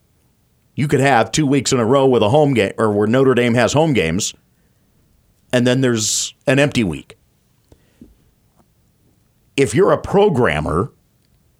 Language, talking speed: English, 150 wpm